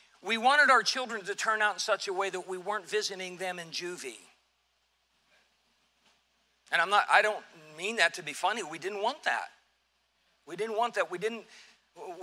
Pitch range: 170-220 Hz